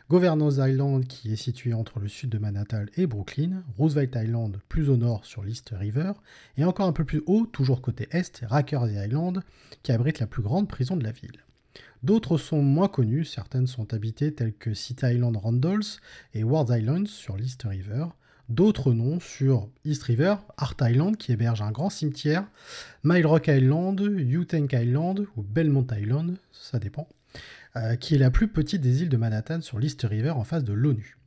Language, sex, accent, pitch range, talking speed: French, male, French, 115-155 Hz, 185 wpm